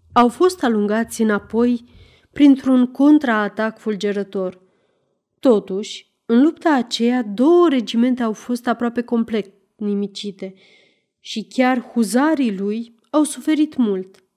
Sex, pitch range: female, 205-265 Hz